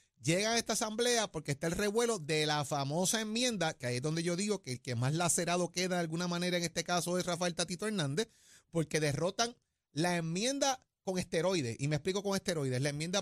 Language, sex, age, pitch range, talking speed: Spanish, male, 30-49, 160-215 Hz, 215 wpm